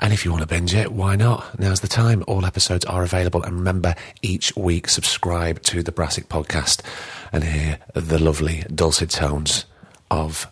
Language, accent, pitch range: English, British, 80-105 Hz